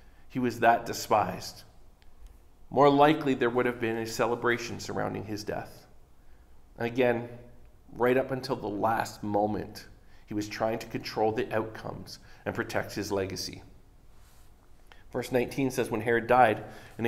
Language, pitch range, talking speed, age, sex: English, 100-130 Hz, 140 wpm, 40-59, male